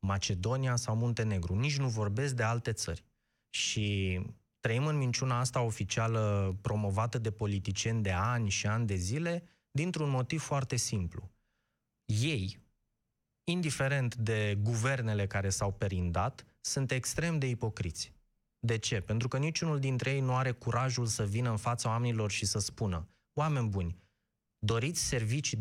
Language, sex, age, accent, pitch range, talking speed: Romanian, male, 20-39, native, 110-140 Hz, 145 wpm